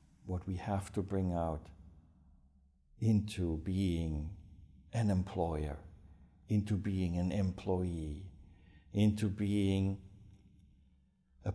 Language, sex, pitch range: English, male, 75-100 Hz